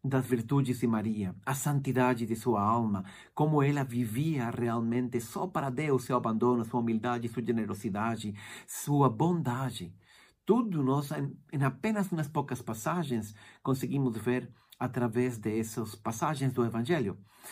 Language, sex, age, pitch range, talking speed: Portuguese, male, 50-69, 120-170 Hz, 130 wpm